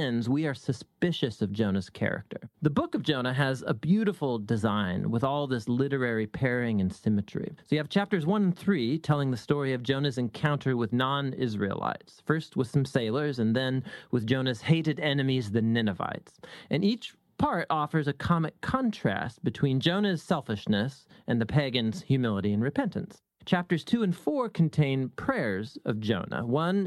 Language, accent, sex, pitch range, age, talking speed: English, American, male, 125-170 Hz, 30-49, 165 wpm